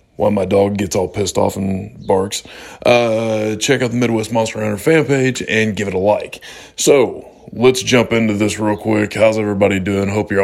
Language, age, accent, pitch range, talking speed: English, 20-39, American, 90-110 Hz, 200 wpm